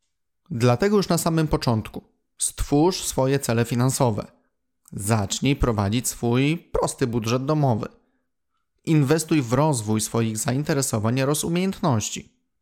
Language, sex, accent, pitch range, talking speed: Polish, male, native, 115-145 Hz, 105 wpm